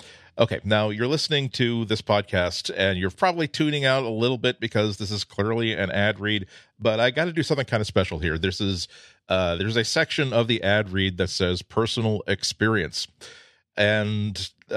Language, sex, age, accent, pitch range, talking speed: English, male, 40-59, American, 95-120 Hz, 190 wpm